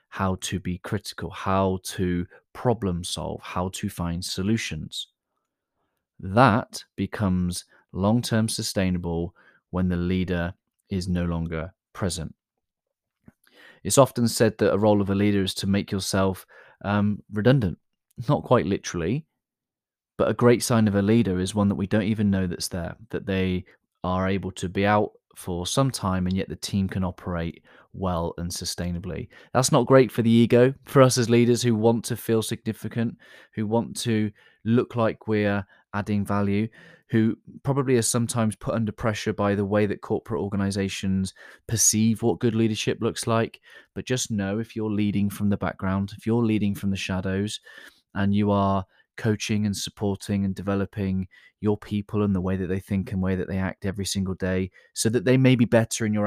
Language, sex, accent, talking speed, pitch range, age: English, male, British, 175 wpm, 95-110 Hz, 30-49